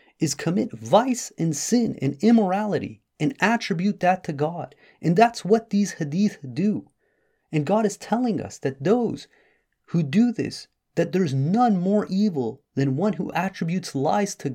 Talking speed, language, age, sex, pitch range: 160 wpm, English, 30-49, male, 145-205 Hz